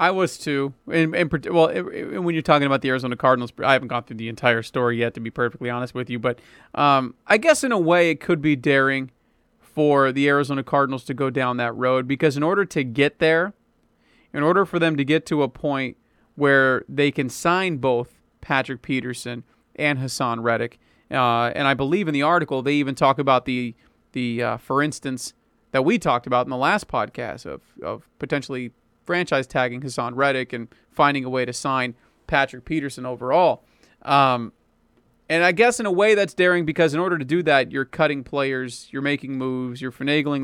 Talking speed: 205 wpm